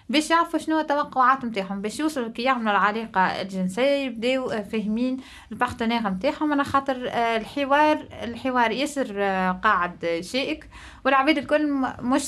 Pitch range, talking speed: 210-275 Hz, 125 wpm